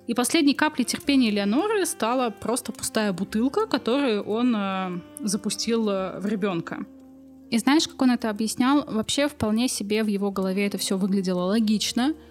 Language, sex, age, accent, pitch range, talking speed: Russian, female, 20-39, native, 200-255 Hz, 155 wpm